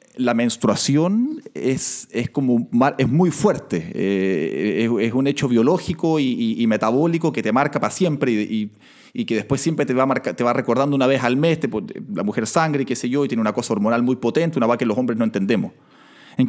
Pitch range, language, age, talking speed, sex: 115-165 Hz, Spanish, 30-49, 230 wpm, male